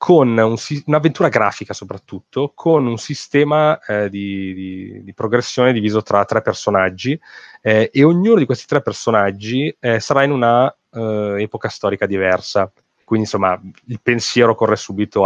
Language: Italian